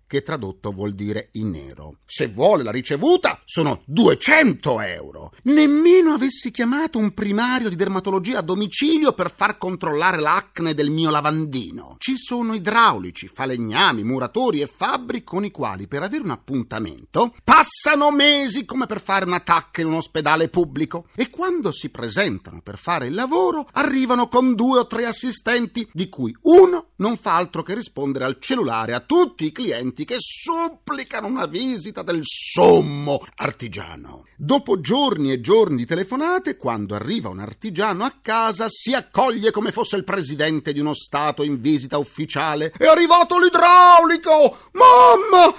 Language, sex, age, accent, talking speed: Italian, male, 40-59, native, 155 wpm